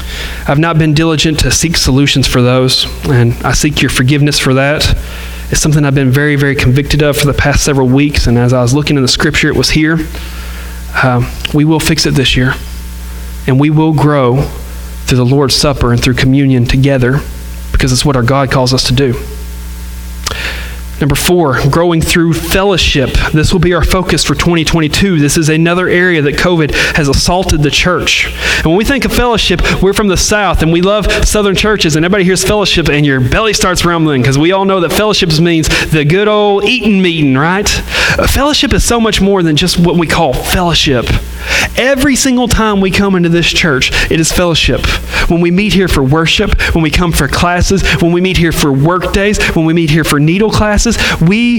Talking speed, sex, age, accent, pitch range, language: 205 wpm, male, 40-59, American, 130-180 Hz, English